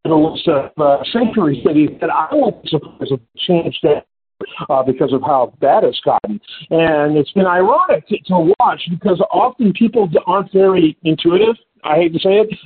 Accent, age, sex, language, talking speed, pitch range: American, 50-69, male, English, 180 wpm, 165-225 Hz